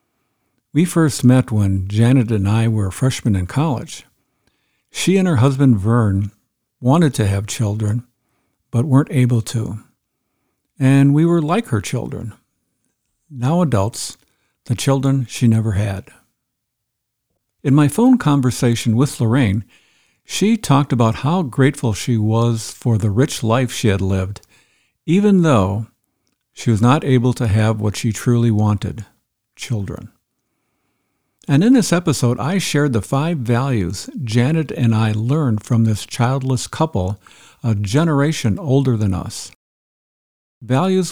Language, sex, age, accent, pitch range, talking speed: English, male, 60-79, American, 110-135 Hz, 135 wpm